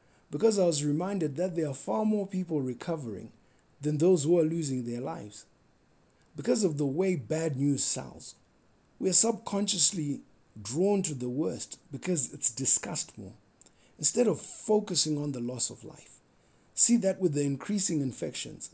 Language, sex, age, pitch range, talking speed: English, male, 50-69, 130-185 Hz, 160 wpm